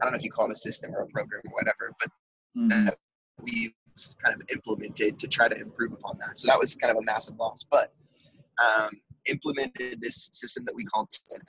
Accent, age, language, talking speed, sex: American, 20-39, English, 225 wpm, male